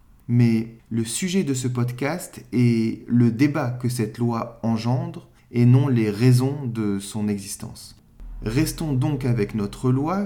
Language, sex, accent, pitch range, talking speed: French, male, French, 110-130 Hz, 145 wpm